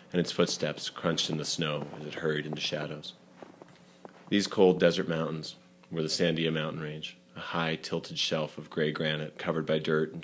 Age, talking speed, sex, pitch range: 30-49, 190 wpm, male, 75-85 Hz